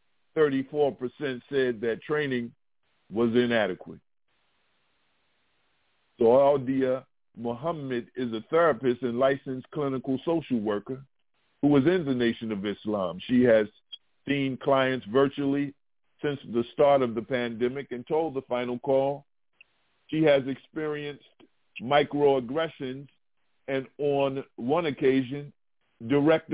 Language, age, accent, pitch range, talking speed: English, 50-69, American, 125-145 Hz, 110 wpm